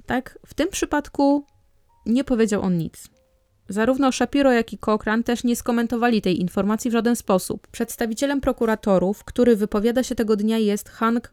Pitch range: 200-250 Hz